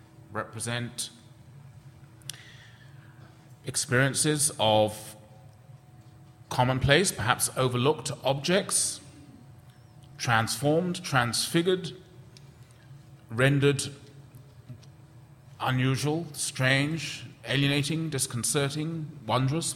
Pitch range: 120-140 Hz